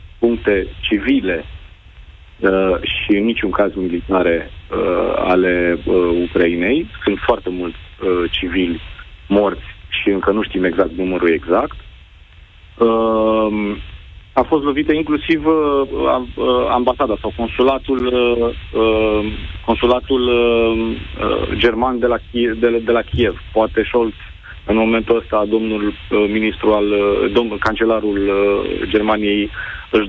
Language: Romanian